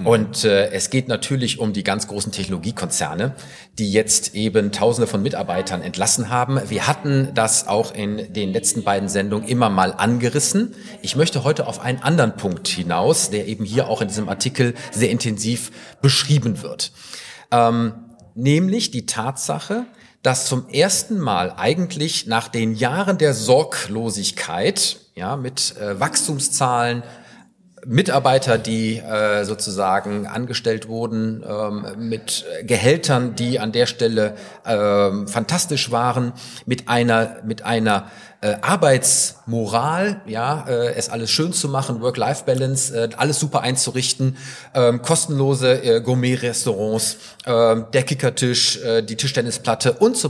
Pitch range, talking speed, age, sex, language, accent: 110-135 Hz, 125 wpm, 40-59, male, German, German